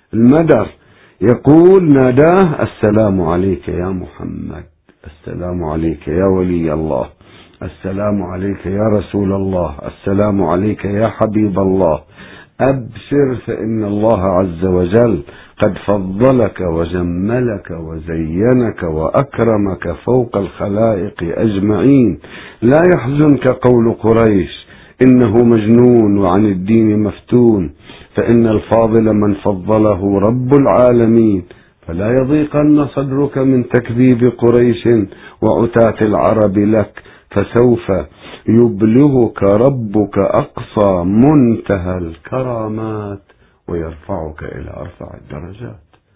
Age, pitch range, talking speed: 50-69, 90-120 Hz, 90 wpm